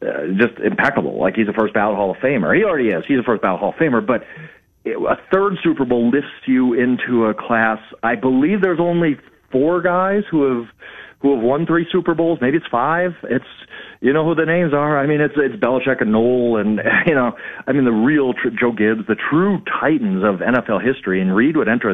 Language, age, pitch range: English, 40-59, 115-180 Hz